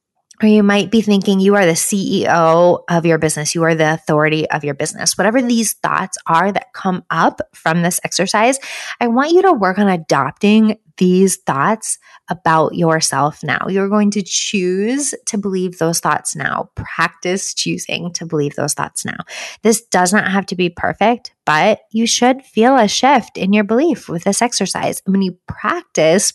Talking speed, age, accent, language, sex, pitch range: 180 wpm, 20-39, American, English, female, 165-215 Hz